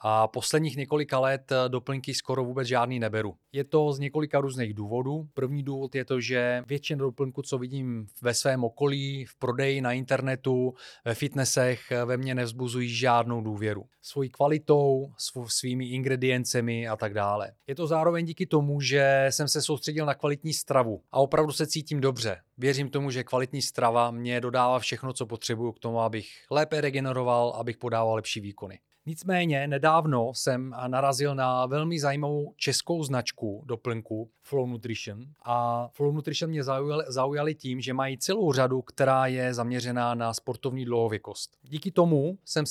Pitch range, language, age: 125-145 Hz, Czech, 30-49